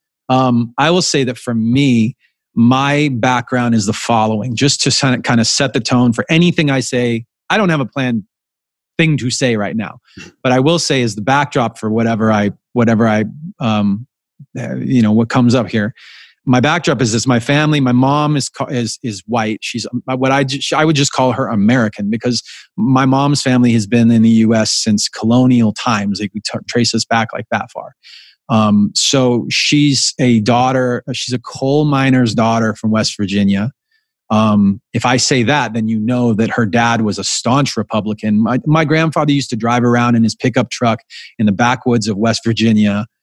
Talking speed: 195 wpm